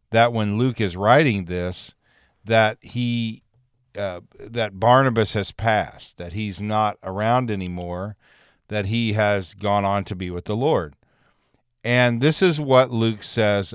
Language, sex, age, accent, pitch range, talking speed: English, male, 40-59, American, 95-120 Hz, 150 wpm